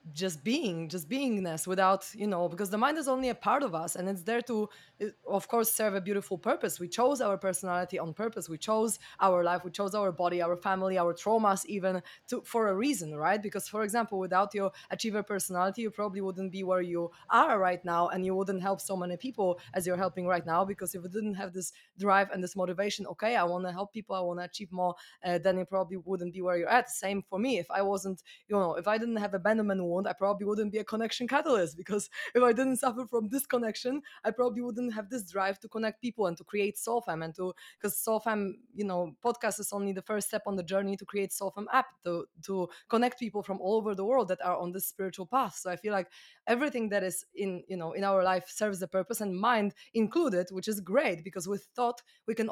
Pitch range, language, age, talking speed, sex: 185-220 Hz, English, 20-39, 240 wpm, female